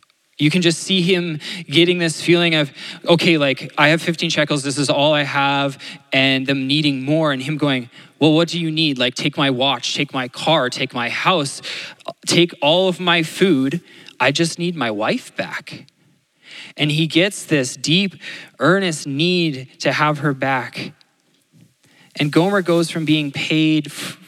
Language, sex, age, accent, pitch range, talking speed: English, male, 20-39, American, 135-165 Hz, 175 wpm